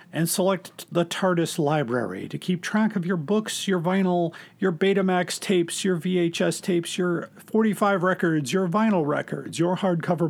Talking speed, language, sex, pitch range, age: 155 wpm, English, male, 165-195 Hz, 40-59